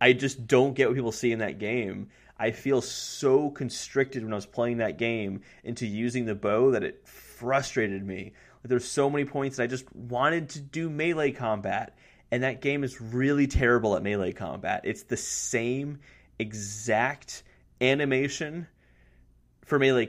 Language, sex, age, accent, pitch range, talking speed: English, male, 30-49, American, 105-140 Hz, 170 wpm